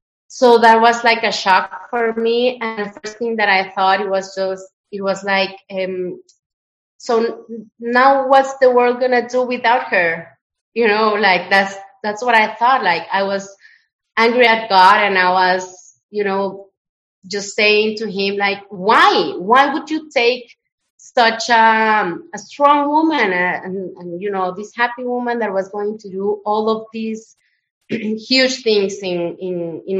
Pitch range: 190-230 Hz